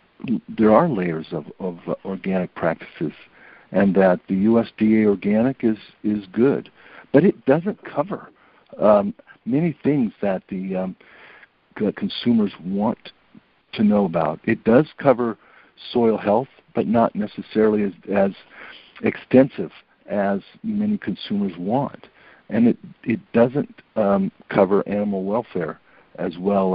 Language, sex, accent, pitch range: English, male, American, 90-115 Hz